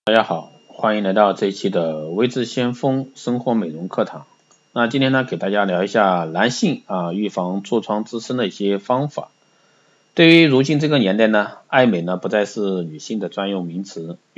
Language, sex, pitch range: Chinese, male, 95-130 Hz